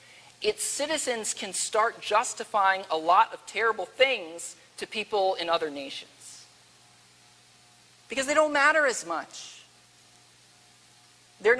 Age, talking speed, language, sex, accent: 40-59, 115 wpm, English, male, American